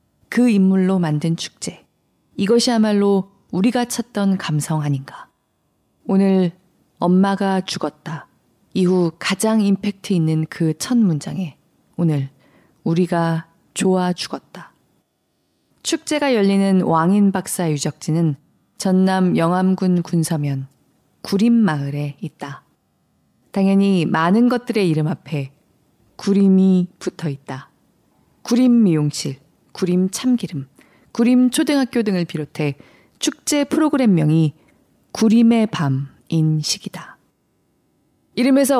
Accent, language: native, Korean